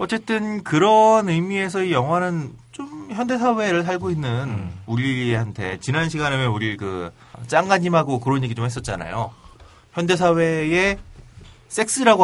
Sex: male